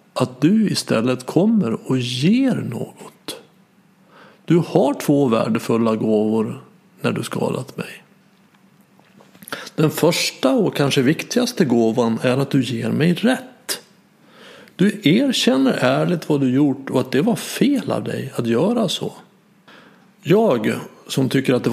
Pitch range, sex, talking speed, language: 145-205 Hz, male, 135 wpm, Swedish